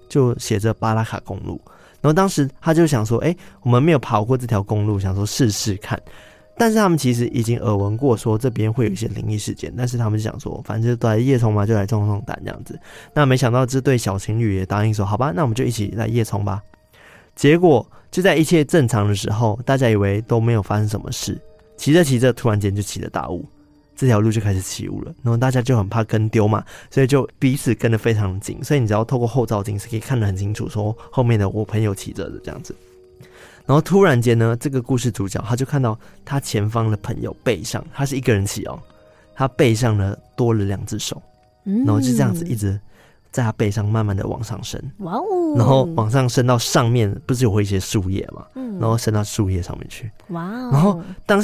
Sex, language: male, Chinese